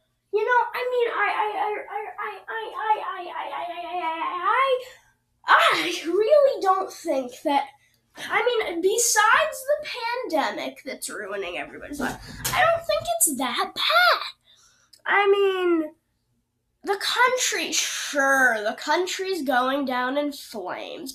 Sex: female